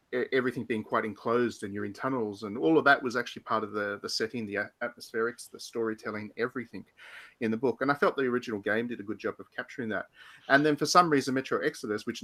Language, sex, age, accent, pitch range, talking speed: English, male, 30-49, Australian, 105-125 Hz, 235 wpm